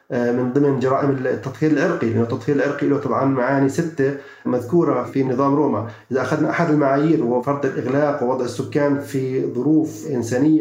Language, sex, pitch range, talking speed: Arabic, male, 135-155 Hz, 160 wpm